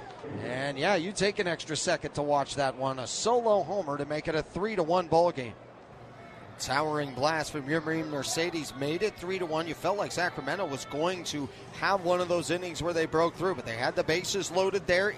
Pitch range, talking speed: 150-200 Hz, 220 wpm